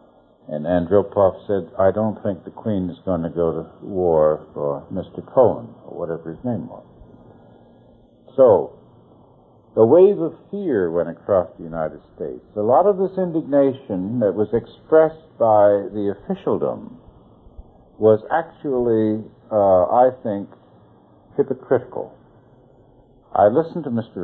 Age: 60-79